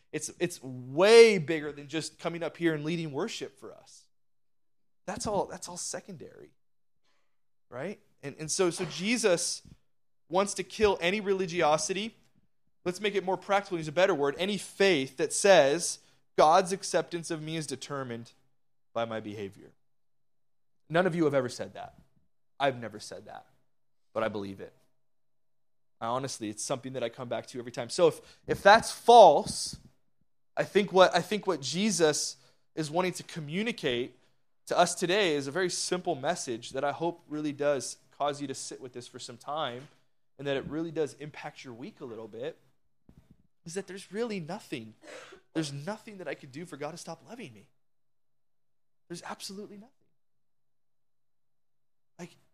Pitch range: 130-185 Hz